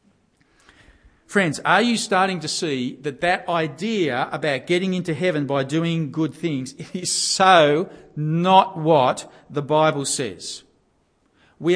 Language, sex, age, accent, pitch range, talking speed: English, male, 50-69, Australian, 135-185 Hz, 130 wpm